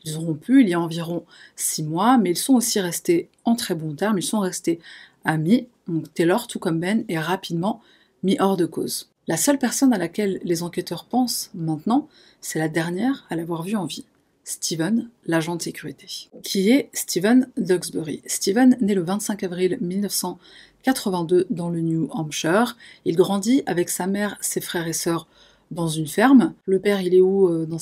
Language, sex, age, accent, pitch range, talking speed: French, female, 30-49, French, 170-220 Hz, 185 wpm